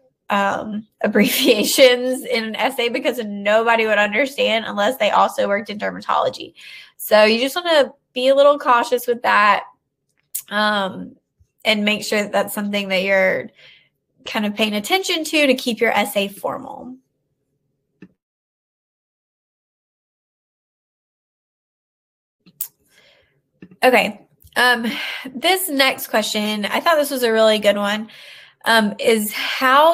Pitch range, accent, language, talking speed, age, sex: 205-255 Hz, American, English, 120 wpm, 20-39, female